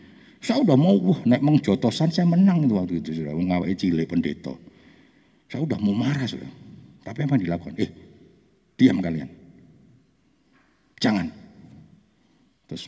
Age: 50-69